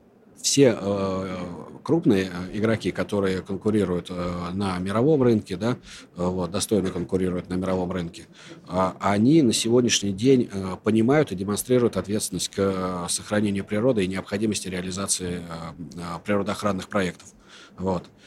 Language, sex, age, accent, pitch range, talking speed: Russian, male, 40-59, native, 90-110 Hz, 100 wpm